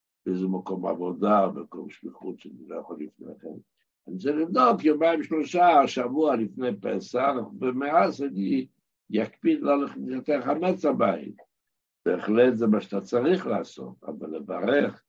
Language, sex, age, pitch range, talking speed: Hebrew, male, 60-79, 115-170 Hz, 135 wpm